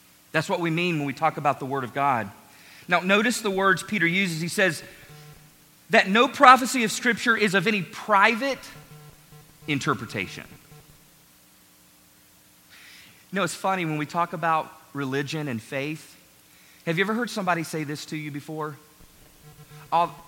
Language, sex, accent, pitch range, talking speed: English, male, American, 140-175 Hz, 155 wpm